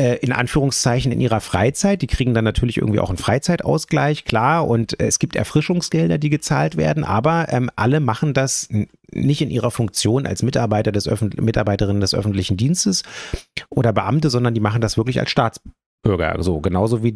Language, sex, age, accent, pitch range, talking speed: German, male, 30-49, German, 105-140 Hz, 170 wpm